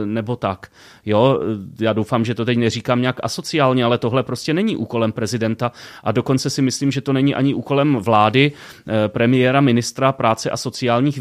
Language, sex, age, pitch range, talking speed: Czech, male, 30-49, 115-135 Hz, 165 wpm